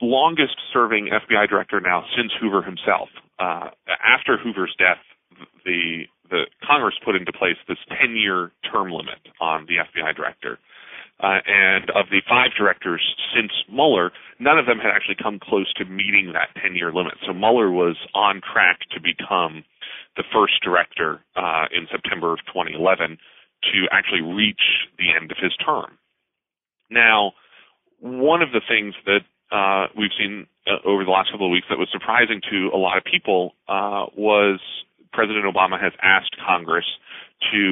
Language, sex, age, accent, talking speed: English, male, 40-59, American, 160 wpm